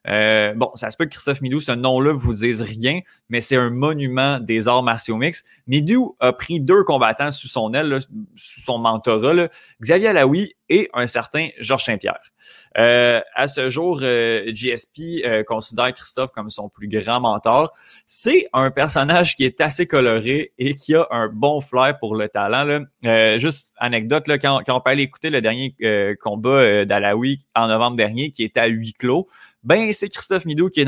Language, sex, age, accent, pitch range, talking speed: French, male, 20-39, Canadian, 115-145 Hz, 200 wpm